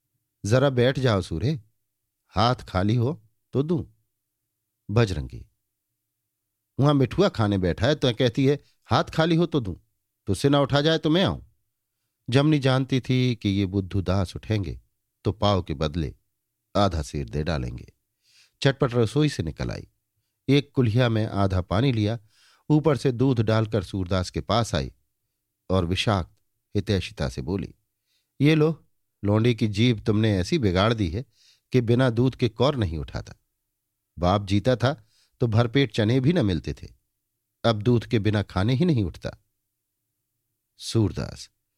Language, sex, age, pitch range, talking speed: Hindi, male, 50-69, 100-130 Hz, 150 wpm